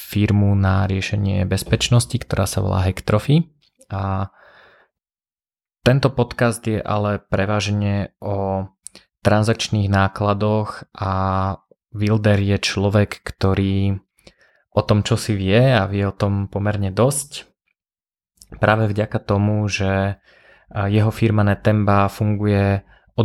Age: 20-39